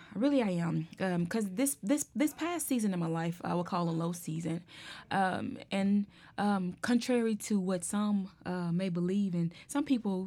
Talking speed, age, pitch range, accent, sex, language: 185 wpm, 20-39, 175-220 Hz, American, female, English